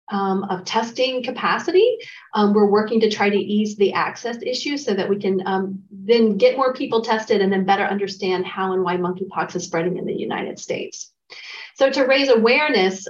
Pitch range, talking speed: 195-235 Hz, 195 wpm